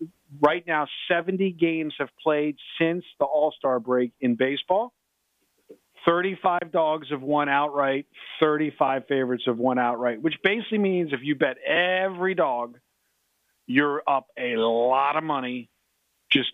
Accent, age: American, 50-69